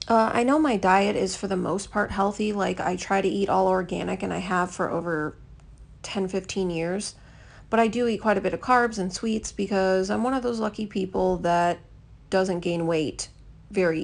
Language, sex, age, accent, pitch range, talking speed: English, female, 30-49, American, 185-220 Hz, 205 wpm